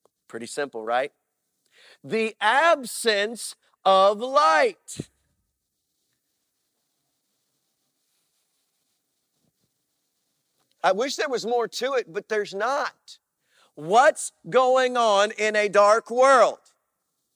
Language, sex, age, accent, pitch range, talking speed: English, male, 50-69, American, 240-315 Hz, 85 wpm